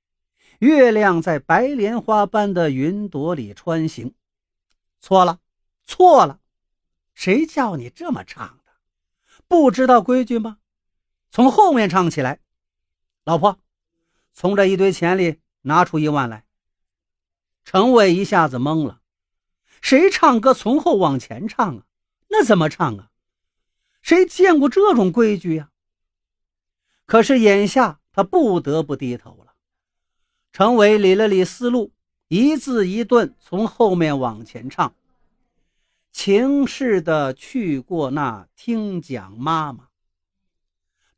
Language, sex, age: Chinese, male, 50-69